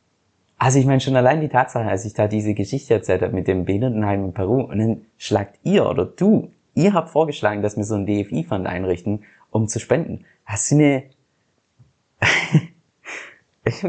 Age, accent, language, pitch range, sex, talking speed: 20-39, German, German, 105-135 Hz, male, 175 wpm